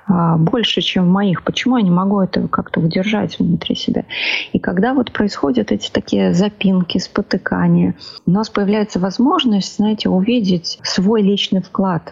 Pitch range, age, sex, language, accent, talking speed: 180-215 Hz, 30-49, female, Russian, native, 145 wpm